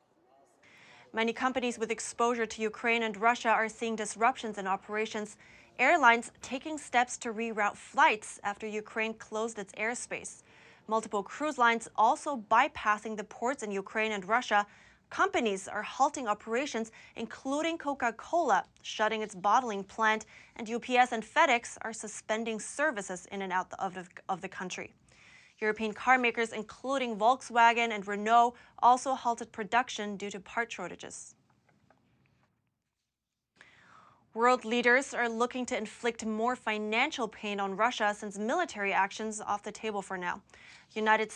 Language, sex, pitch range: English, female, 210-240 Hz